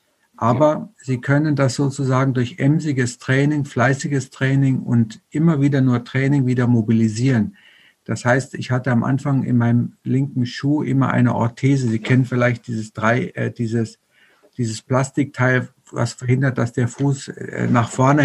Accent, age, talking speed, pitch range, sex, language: German, 50-69, 145 wpm, 120-145 Hz, male, German